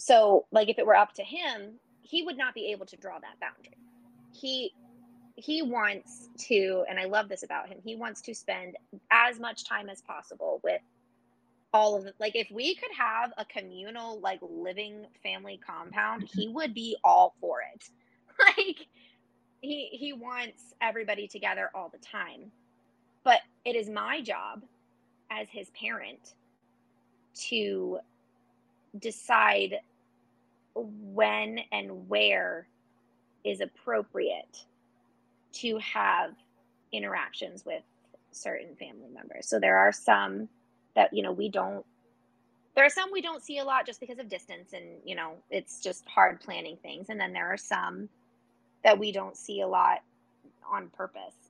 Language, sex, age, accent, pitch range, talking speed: English, female, 20-39, American, 185-245 Hz, 155 wpm